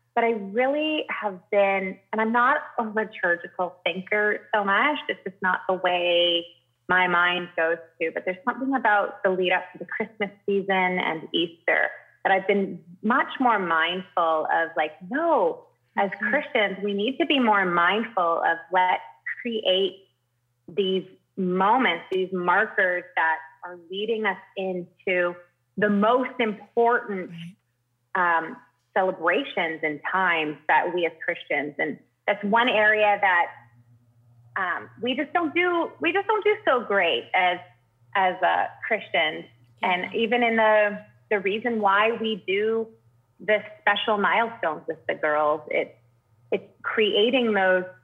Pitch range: 170-220 Hz